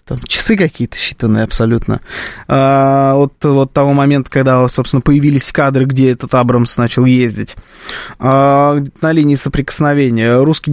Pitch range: 130-160 Hz